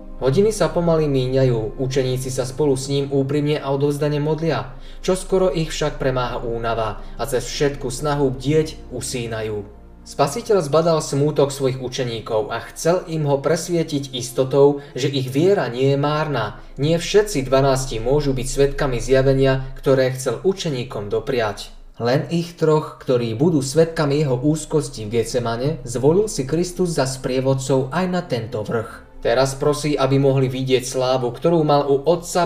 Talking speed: 150 wpm